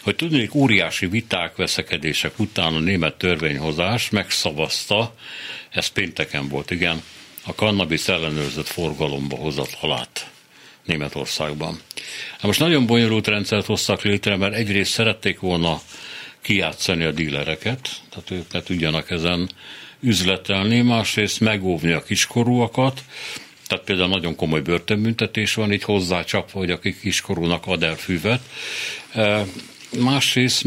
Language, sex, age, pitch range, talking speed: Hungarian, male, 60-79, 85-105 Hz, 115 wpm